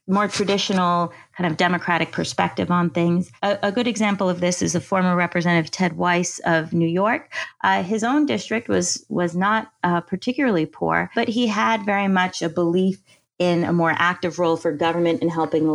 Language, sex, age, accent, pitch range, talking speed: English, female, 30-49, American, 160-195 Hz, 190 wpm